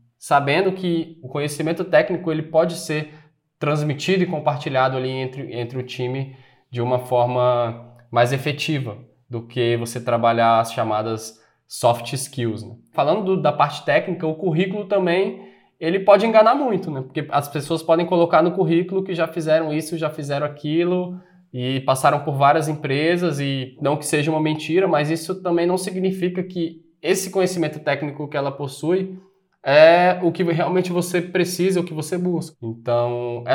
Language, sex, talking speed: Portuguese, male, 160 wpm